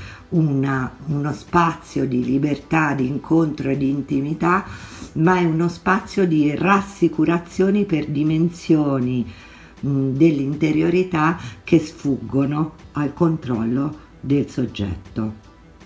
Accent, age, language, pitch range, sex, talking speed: native, 50-69, Italian, 130-160 Hz, female, 90 wpm